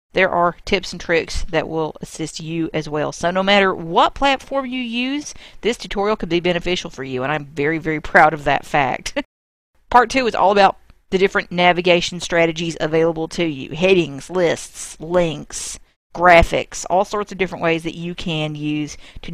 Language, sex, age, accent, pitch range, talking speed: English, female, 40-59, American, 155-185 Hz, 185 wpm